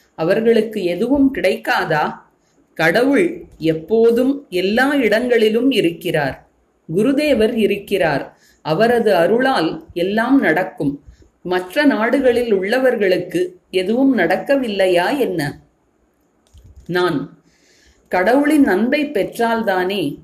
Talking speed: 70 wpm